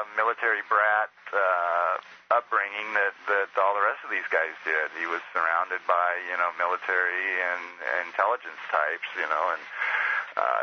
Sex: male